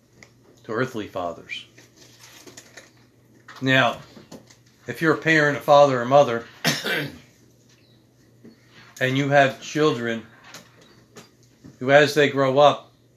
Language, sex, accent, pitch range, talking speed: English, male, American, 115-140 Hz, 90 wpm